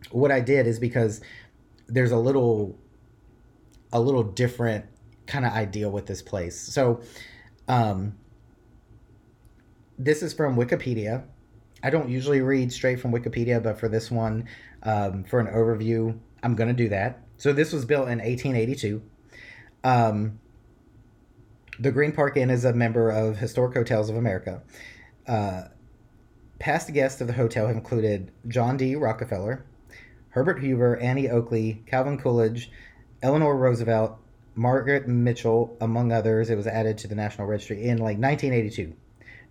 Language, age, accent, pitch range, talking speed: English, 30-49, American, 110-130 Hz, 145 wpm